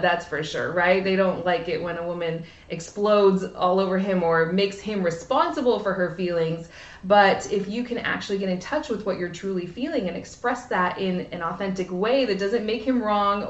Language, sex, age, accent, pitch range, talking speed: English, female, 20-39, American, 180-220 Hz, 210 wpm